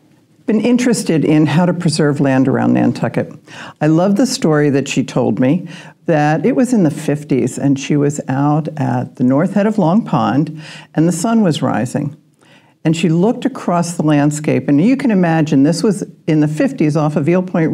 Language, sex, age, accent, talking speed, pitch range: English, female, 60-79, American, 195 wpm, 140-185 Hz